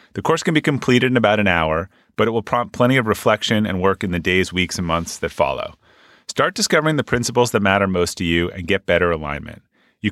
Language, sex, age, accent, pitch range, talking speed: English, male, 30-49, American, 90-115 Hz, 235 wpm